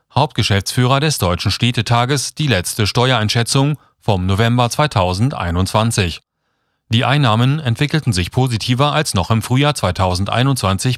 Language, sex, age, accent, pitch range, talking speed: German, male, 30-49, German, 100-135 Hz, 110 wpm